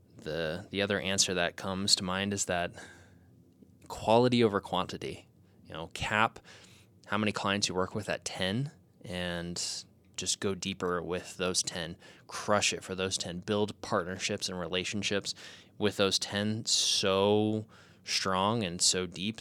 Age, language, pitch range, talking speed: 20-39, English, 90-105 Hz, 150 wpm